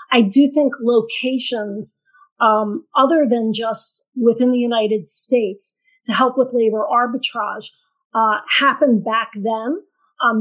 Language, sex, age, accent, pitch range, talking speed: English, female, 40-59, American, 220-255 Hz, 125 wpm